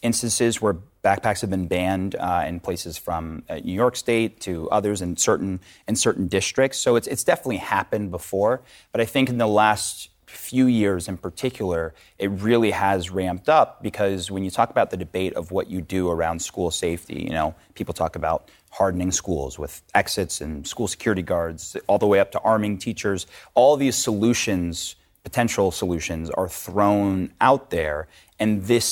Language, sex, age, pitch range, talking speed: English, male, 30-49, 85-110 Hz, 180 wpm